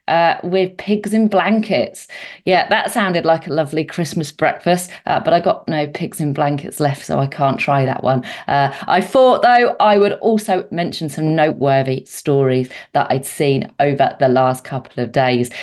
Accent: British